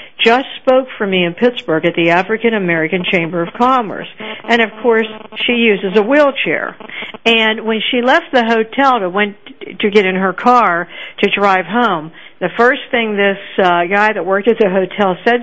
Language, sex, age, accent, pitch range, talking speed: English, female, 60-79, American, 195-250 Hz, 185 wpm